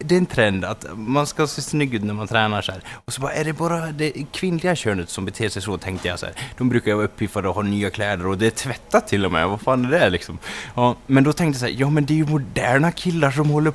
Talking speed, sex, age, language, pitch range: 295 wpm, male, 20-39, Swedish, 115-160 Hz